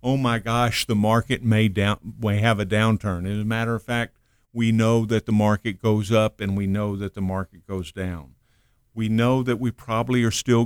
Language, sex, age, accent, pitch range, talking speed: English, male, 50-69, American, 100-115 Hz, 215 wpm